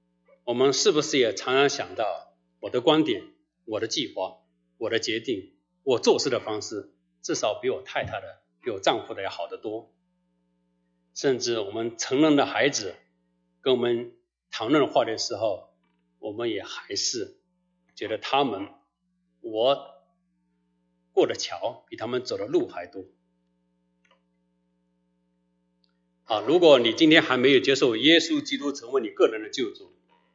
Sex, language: male, English